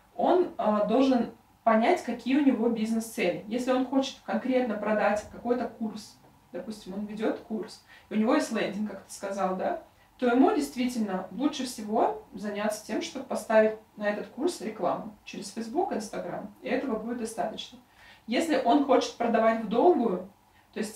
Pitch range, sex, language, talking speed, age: 205-255 Hz, female, Russian, 155 wpm, 20-39